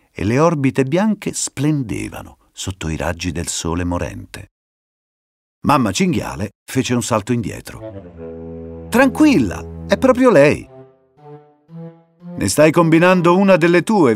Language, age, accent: Italian, 50-69, native